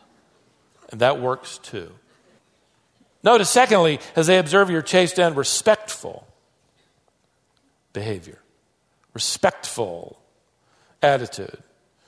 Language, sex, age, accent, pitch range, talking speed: English, male, 50-69, American, 145-205 Hz, 80 wpm